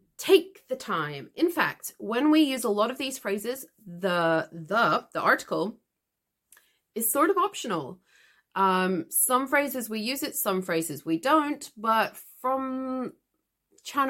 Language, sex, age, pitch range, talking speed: English, female, 30-49, 165-250 Hz, 145 wpm